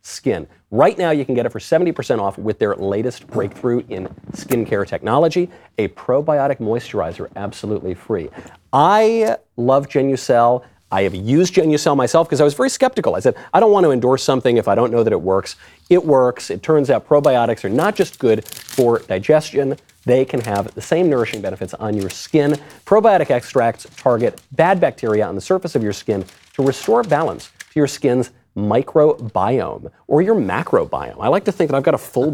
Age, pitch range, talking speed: 40-59, 105-150 Hz, 190 wpm